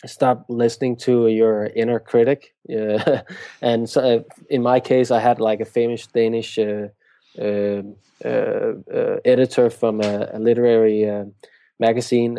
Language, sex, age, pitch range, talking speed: English, male, 20-39, 110-120 Hz, 145 wpm